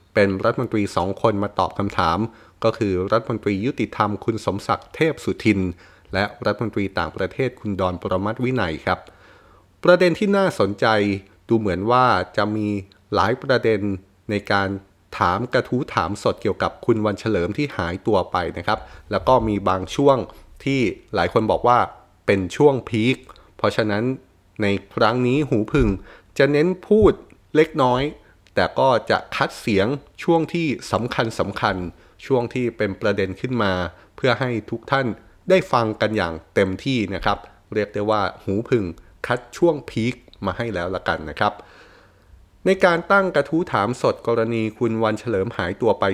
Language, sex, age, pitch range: Thai, male, 30-49, 95-125 Hz